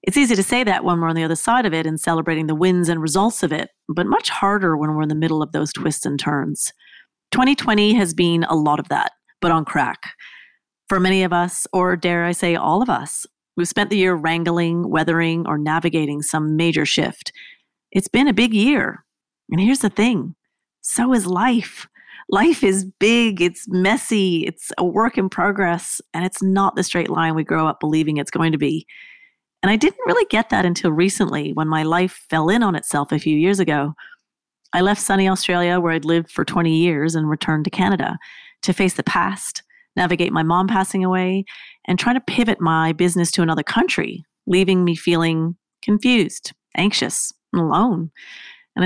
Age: 30-49